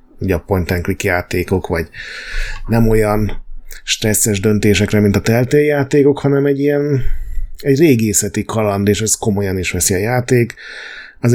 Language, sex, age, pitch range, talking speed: Hungarian, male, 30-49, 95-115 Hz, 145 wpm